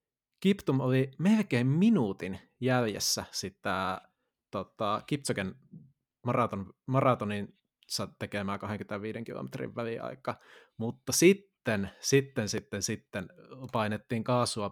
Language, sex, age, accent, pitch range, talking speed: Finnish, male, 20-39, native, 110-135 Hz, 85 wpm